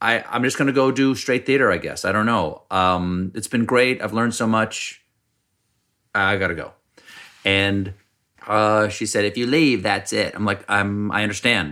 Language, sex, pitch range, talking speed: English, male, 95-115 Hz, 195 wpm